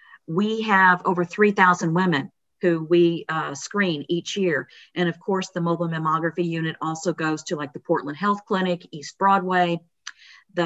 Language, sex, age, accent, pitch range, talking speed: English, female, 50-69, American, 165-195 Hz, 165 wpm